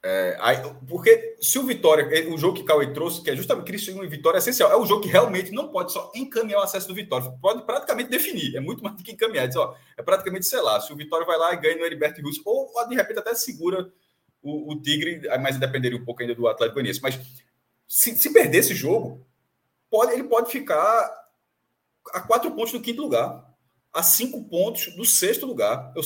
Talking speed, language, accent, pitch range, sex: 225 wpm, Portuguese, Brazilian, 150-230 Hz, male